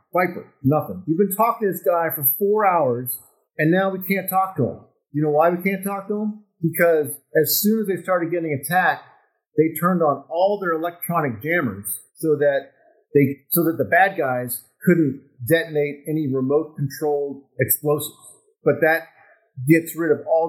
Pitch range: 135-175 Hz